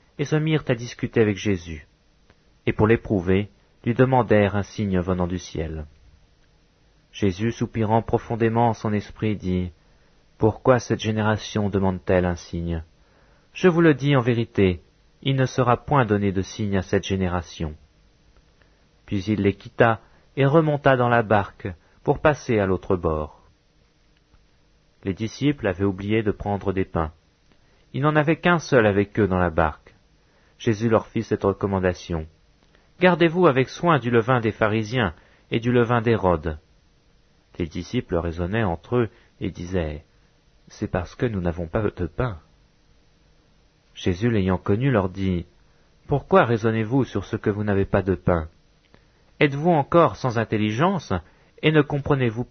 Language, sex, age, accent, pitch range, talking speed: English, male, 40-59, French, 95-130 Hz, 155 wpm